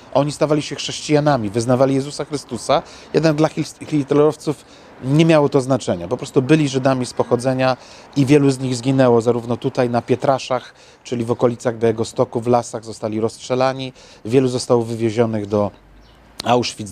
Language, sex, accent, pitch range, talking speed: Polish, male, native, 120-150 Hz, 155 wpm